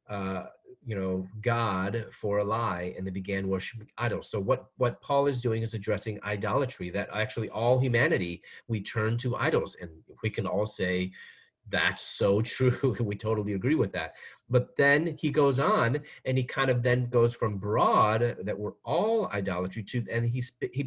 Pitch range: 100-125 Hz